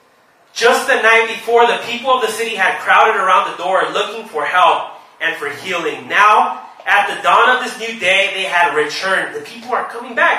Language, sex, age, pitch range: English, male, 30-49, 185-240 Hz